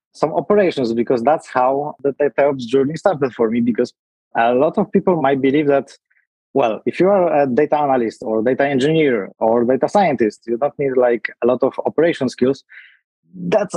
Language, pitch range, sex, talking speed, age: English, 115-150 Hz, male, 185 wpm, 20-39